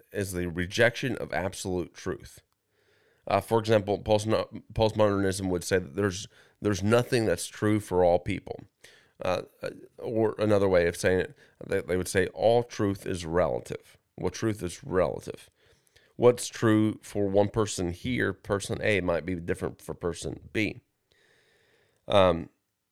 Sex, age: male, 30-49